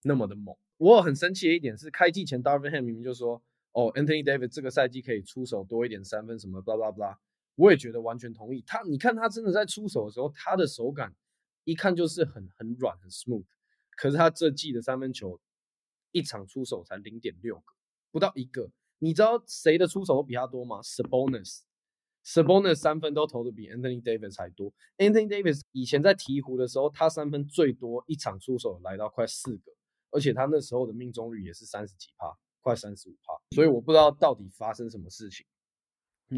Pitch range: 115-155 Hz